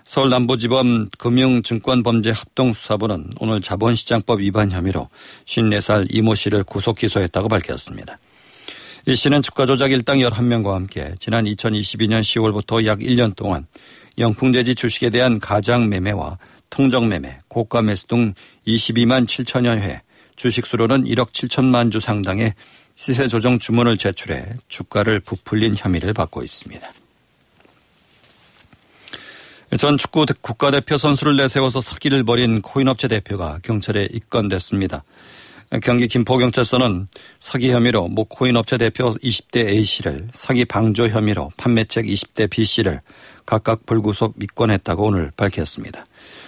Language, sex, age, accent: Korean, male, 50-69, native